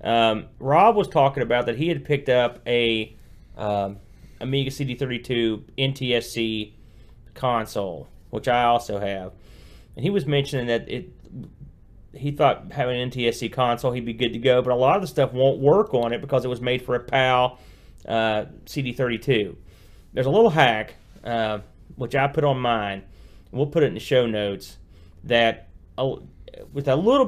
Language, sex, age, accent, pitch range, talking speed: English, male, 30-49, American, 115-135 Hz, 175 wpm